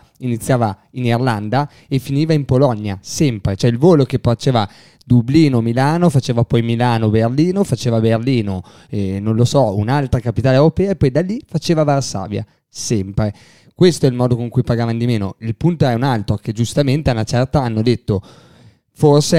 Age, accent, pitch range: 20-39, native, 115-150 Hz